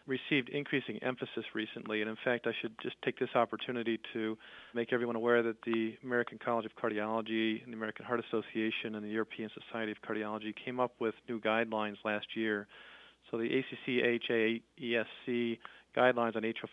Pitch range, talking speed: 110-125 Hz, 170 wpm